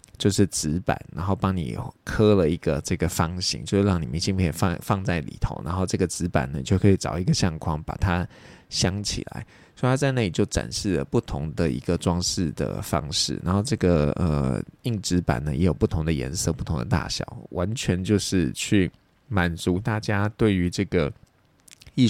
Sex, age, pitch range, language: male, 20-39, 85-105 Hz, Chinese